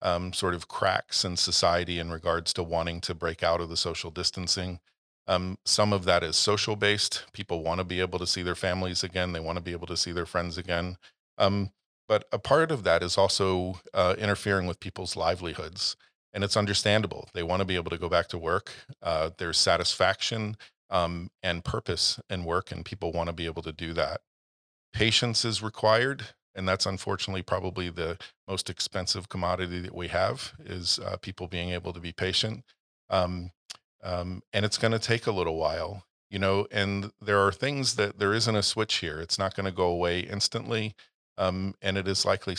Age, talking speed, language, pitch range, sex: 40-59, 195 wpm, English, 85-100 Hz, male